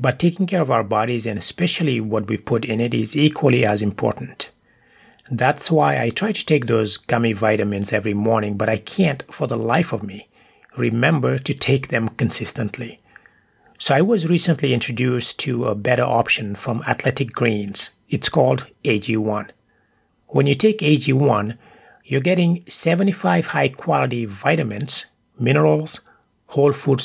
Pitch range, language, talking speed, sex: 115-155 Hz, English, 150 wpm, male